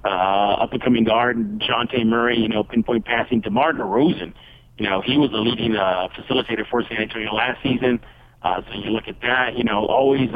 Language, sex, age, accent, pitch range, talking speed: English, male, 50-69, American, 110-130 Hz, 210 wpm